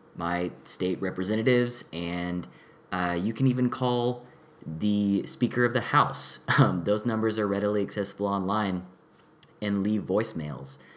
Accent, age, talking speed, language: American, 20-39, 130 wpm, English